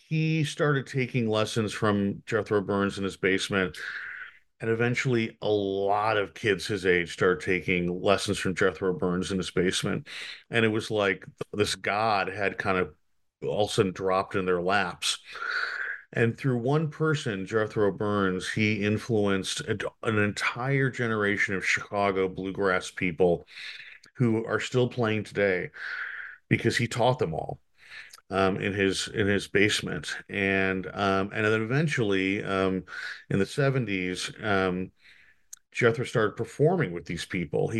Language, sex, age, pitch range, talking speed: English, male, 40-59, 95-120 Hz, 145 wpm